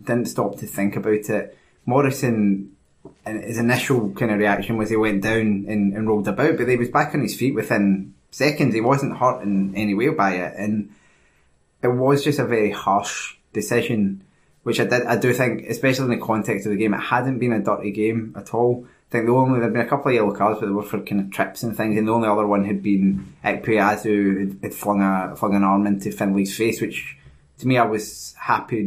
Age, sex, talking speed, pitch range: 20-39, male, 230 wpm, 100-120 Hz